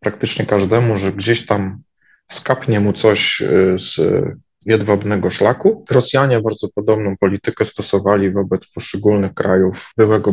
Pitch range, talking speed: 100-115 Hz, 115 wpm